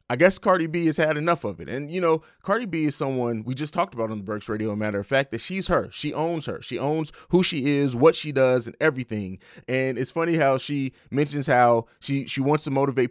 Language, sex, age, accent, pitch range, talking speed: English, male, 20-39, American, 125-165 Hz, 255 wpm